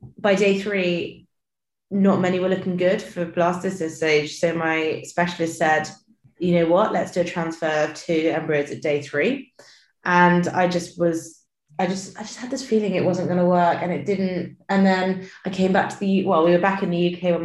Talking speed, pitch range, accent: 210 wpm, 170-200 Hz, British